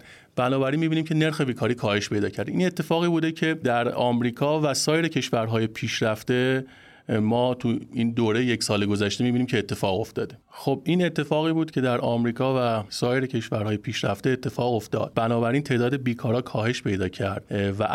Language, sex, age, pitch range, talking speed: Persian, male, 30-49, 110-140 Hz, 165 wpm